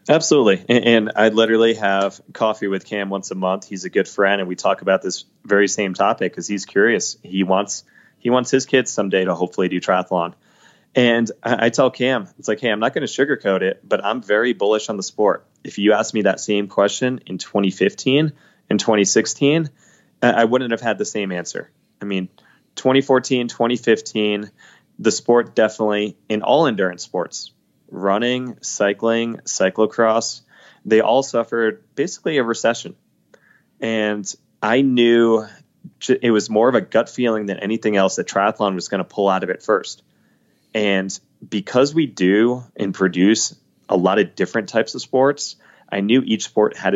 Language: English